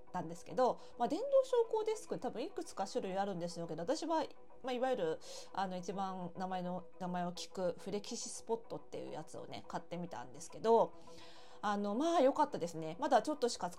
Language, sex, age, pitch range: Japanese, female, 20-39, 175-245 Hz